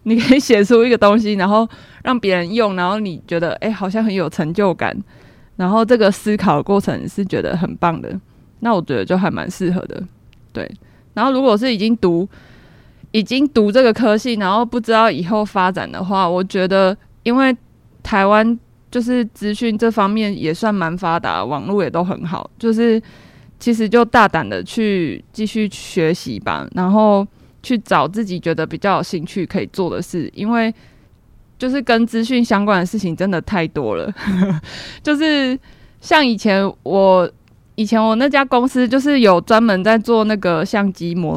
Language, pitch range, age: Chinese, 185-230 Hz, 20-39